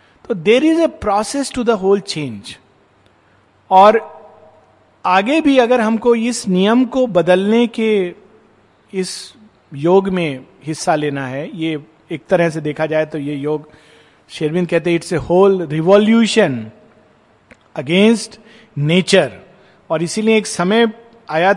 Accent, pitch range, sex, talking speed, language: native, 165-220 Hz, male, 130 wpm, Hindi